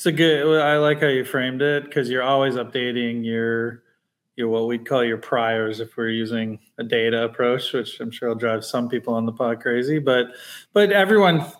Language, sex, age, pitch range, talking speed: English, male, 20-39, 120-145 Hz, 205 wpm